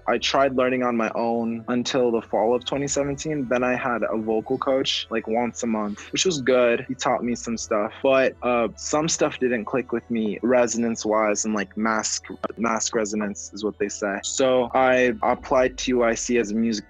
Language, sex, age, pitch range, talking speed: English, male, 20-39, 110-125 Hz, 200 wpm